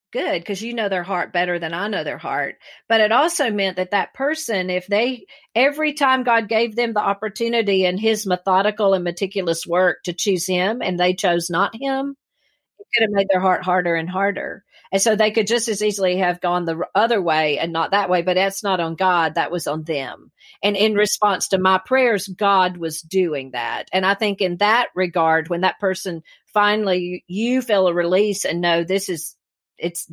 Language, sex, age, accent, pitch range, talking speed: English, female, 50-69, American, 175-210 Hz, 210 wpm